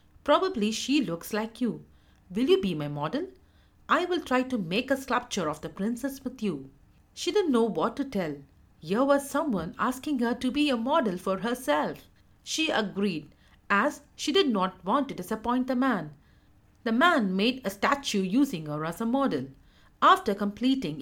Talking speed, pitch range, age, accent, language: 175 wpm, 185-275 Hz, 50-69, Indian, English